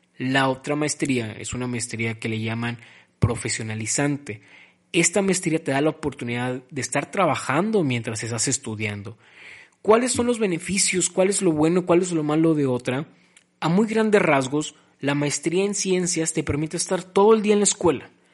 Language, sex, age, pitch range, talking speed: Spanish, male, 20-39, 130-165 Hz, 175 wpm